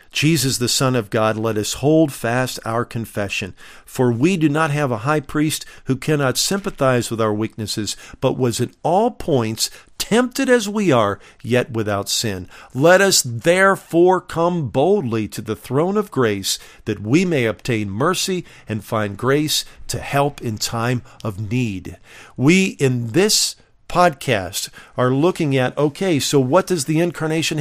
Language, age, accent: English, 50-69, American